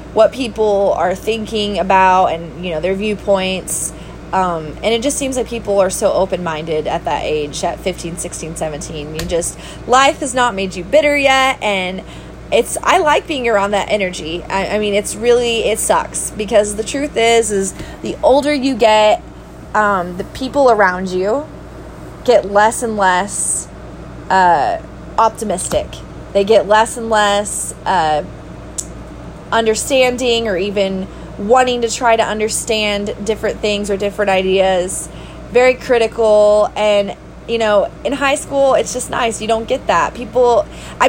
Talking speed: 155 wpm